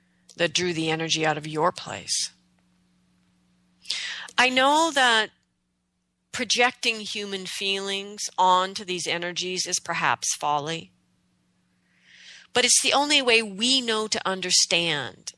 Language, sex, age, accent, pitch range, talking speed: English, female, 40-59, American, 160-205 Hz, 115 wpm